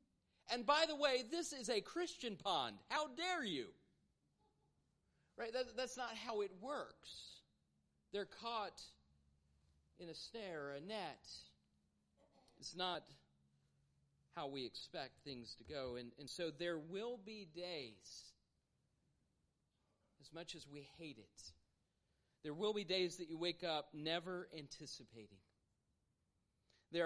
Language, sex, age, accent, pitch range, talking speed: English, male, 40-59, American, 125-175 Hz, 130 wpm